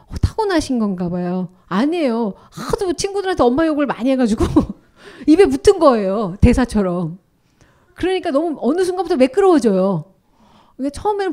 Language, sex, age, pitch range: Korean, female, 30-49, 215-310 Hz